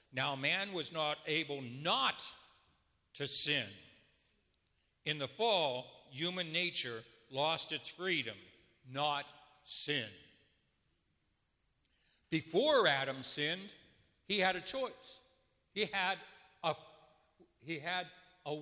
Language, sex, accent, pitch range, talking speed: English, male, American, 115-150 Hz, 100 wpm